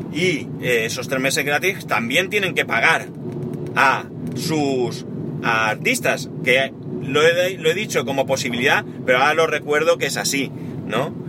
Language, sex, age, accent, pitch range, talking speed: Spanish, male, 30-49, Spanish, 125-160 Hz, 155 wpm